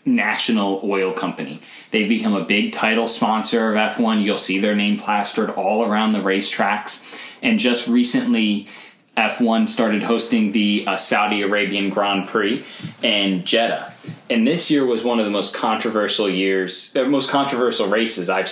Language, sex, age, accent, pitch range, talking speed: English, male, 10-29, American, 95-125 Hz, 160 wpm